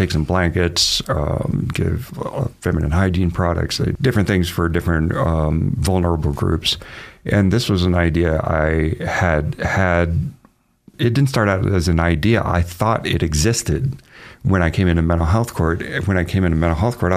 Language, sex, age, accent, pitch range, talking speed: English, male, 40-59, American, 85-110 Hz, 175 wpm